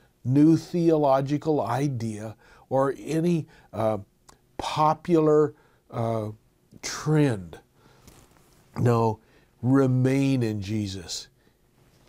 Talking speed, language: 65 wpm, English